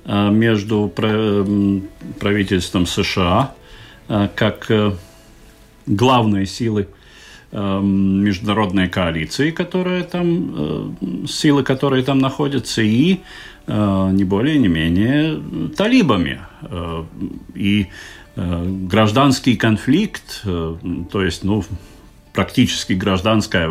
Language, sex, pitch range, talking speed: Russian, male, 95-120 Hz, 70 wpm